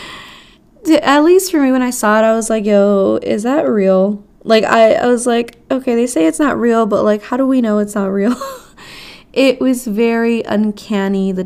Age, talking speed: 20-39, 210 wpm